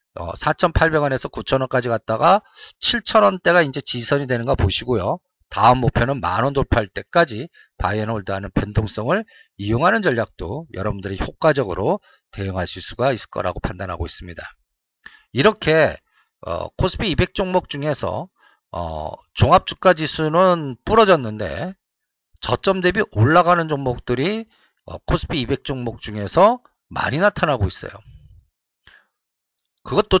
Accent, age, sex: native, 50-69, male